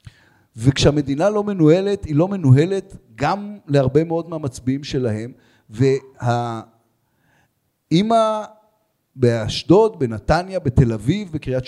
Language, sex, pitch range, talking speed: Hebrew, male, 135-185 Hz, 85 wpm